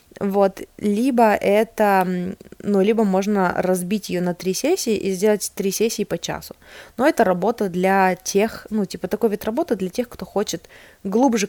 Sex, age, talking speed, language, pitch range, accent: female, 20-39, 165 wpm, Russian, 175-210 Hz, native